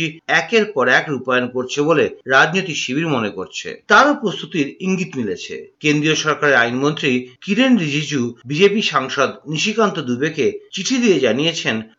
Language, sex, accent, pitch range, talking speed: Bengali, male, native, 140-210 Hz, 75 wpm